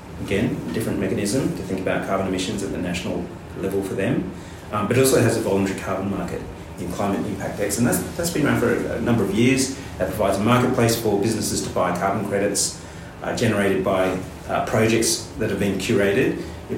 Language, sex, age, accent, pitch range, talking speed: English, male, 30-49, Australian, 90-110 Hz, 210 wpm